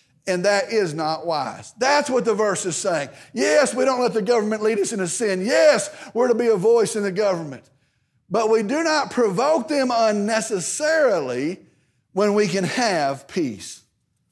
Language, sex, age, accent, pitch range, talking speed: English, male, 50-69, American, 195-280 Hz, 175 wpm